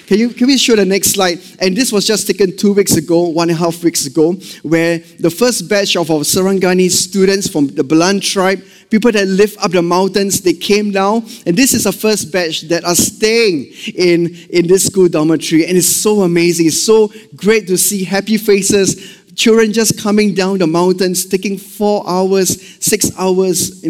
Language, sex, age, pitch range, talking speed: English, male, 20-39, 155-200 Hz, 200 wpm